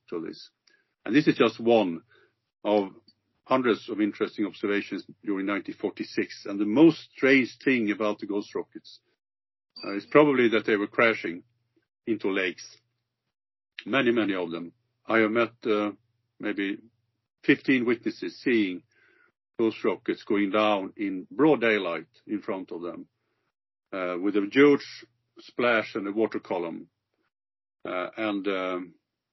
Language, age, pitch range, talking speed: English, 50-69, 100-120 Hz, 135 wpm